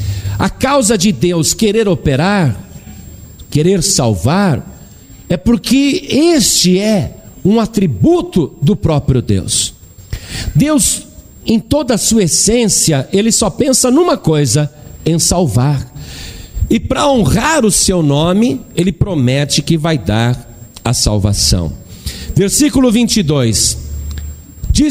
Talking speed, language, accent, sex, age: 110 wpm, Portuguese, Brazilian, male, 50-69